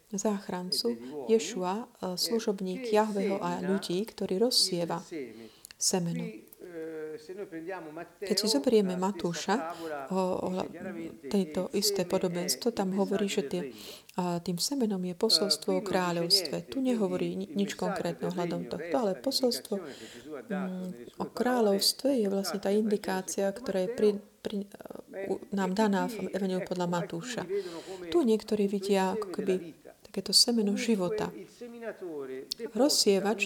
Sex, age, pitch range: female, 30-49, 185-215 Hz